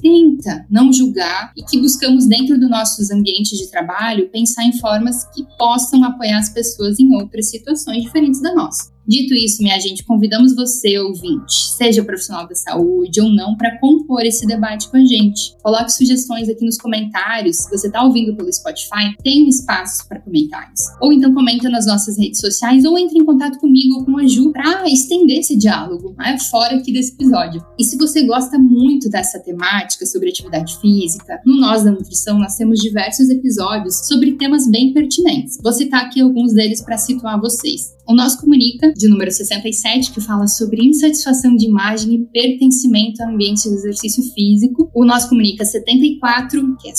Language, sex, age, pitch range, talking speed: Portuguese, female, 10-29, 215-265 Hz, 180 wpm